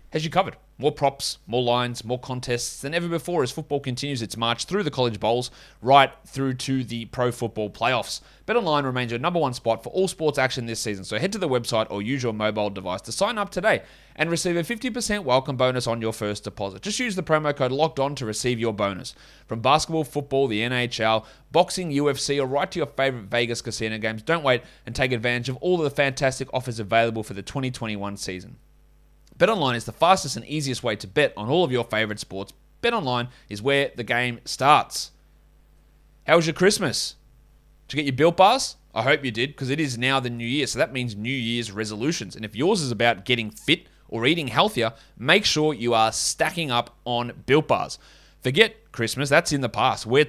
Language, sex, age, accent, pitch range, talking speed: English, male, 30-49, Australian, 115-145 Hz, 215 wpm